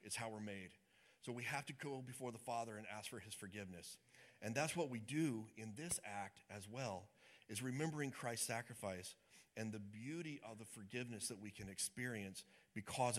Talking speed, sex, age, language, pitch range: 190 wpm, male, 40-59, English, 105-135 Hz